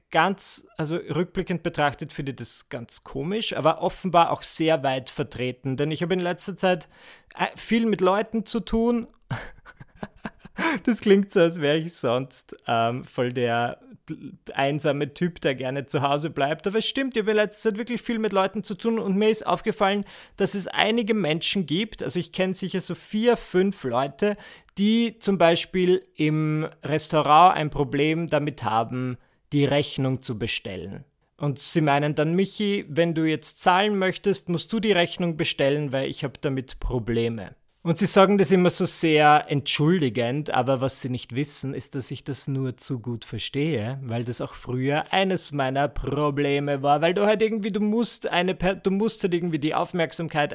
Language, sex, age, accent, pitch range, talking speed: German, male, 30-49, German, 140-195 Hz, 175 wpm